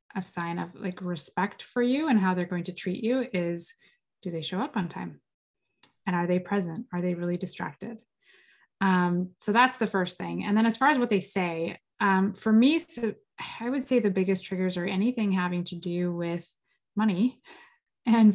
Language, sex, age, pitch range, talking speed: English, female, 20-39, 180-225 Hz, 195 wpm